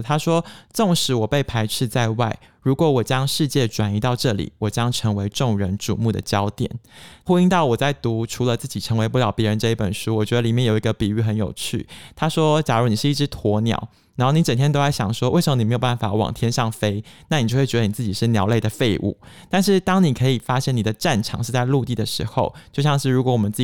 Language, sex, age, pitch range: Chinese, male, 20-39, 110-135 Hz